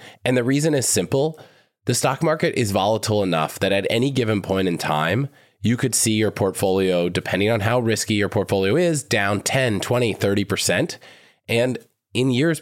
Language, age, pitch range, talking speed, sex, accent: English, 20-39, 95-125 Hz, 175 wpm, male, American